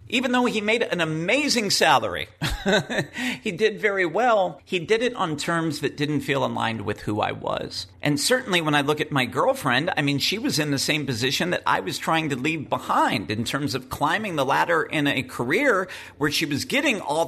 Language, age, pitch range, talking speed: English, 40-59, 130-170 Hz, 210 wpm